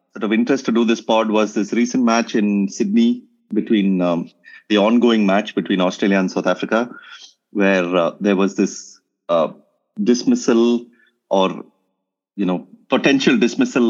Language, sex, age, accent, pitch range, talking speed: English, male, 30-49, Indian, 95-125 Hz, 150 wpm